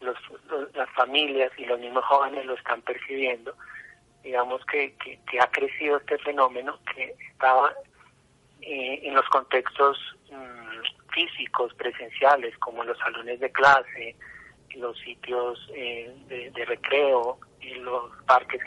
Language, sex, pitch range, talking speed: Spanish, male, 125-145 Hz, 135 wpm